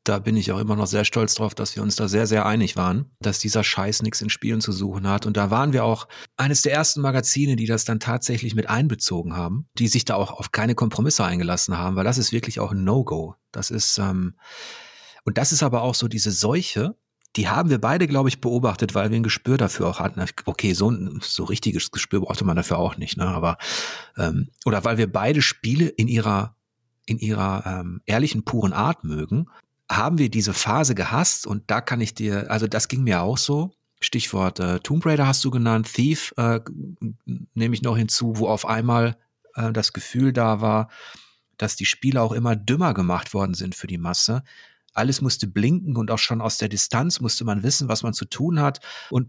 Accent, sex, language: German, male, German